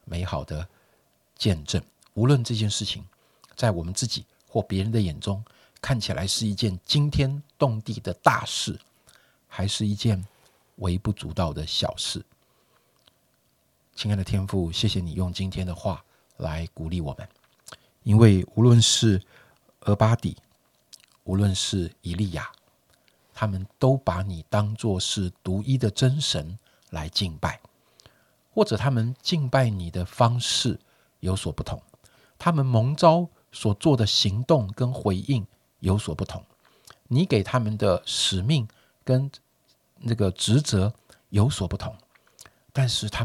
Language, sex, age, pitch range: Chinese, male, 50-69, 95-120 Hz